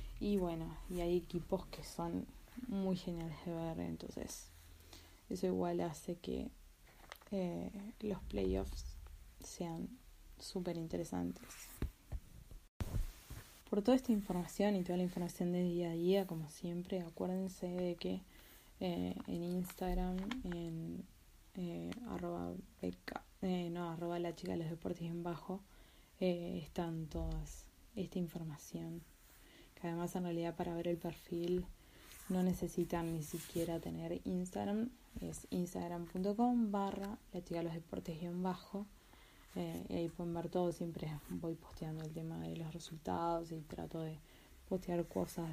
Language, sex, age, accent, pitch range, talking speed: Spanish, female, 20-39, Argentinian, 155-180 Hz, 130 wpm